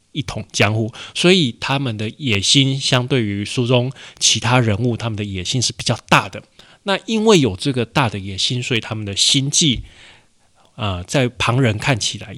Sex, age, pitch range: male, 20-39, 105-130 Hz